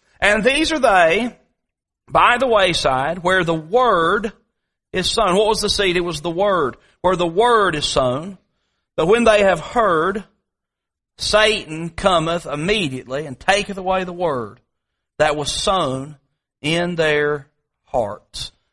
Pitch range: 165-230 Hz